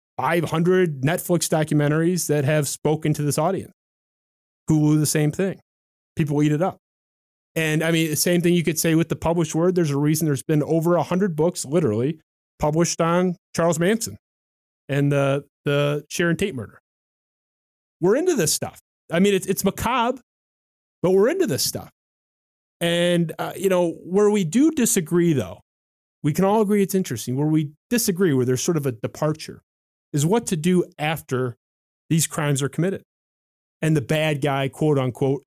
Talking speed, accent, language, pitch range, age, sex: 175 wpm, American, English, 140-180 Hz, 30-49, male